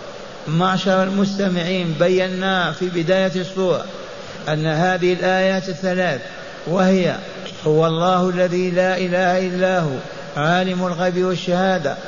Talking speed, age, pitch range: 105 wpm, 60-79, 170-185 Hz